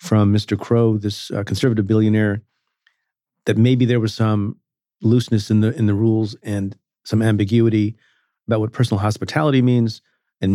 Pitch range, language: 105-125 Hz, English